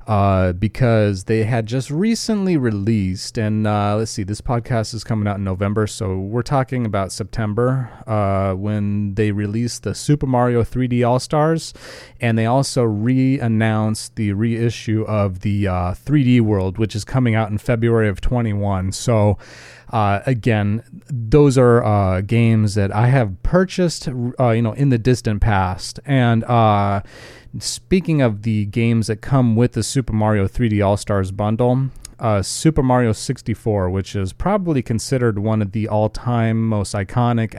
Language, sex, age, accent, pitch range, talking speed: English, male, 30-49, American, 105-125 Hz, 155 wpm